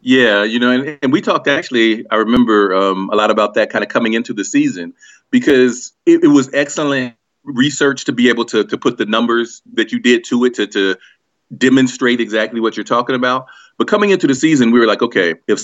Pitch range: 100-125 Hz